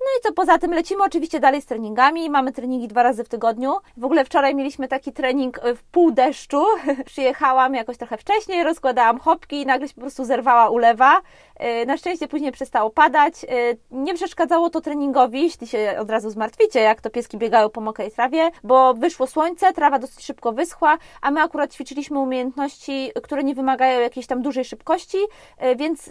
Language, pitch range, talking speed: Polish, 240-305 Hz, 185 wpm